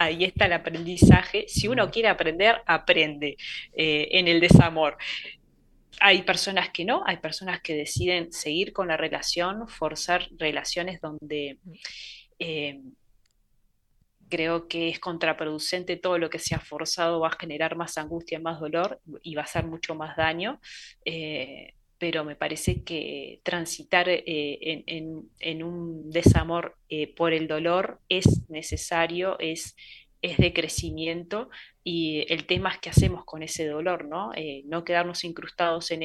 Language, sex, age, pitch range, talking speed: Spanish, female, 20-39, 160-180 Hz, 150 wpm